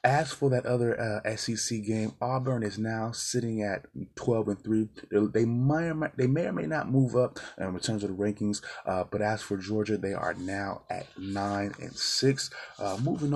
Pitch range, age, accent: 100-120 Hz, 20-39, American